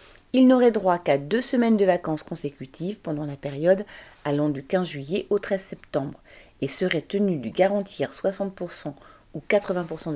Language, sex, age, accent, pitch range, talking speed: French, female, 40-59, French, 155-200 Hz, 160 wpm